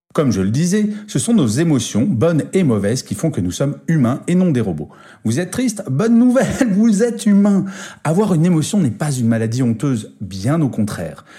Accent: French